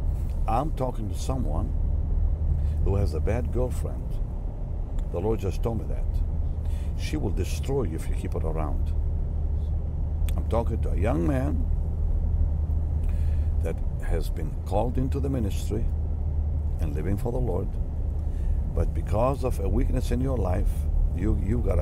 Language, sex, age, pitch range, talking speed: English, male, 60-79, 75-85 Hz, 145 wpm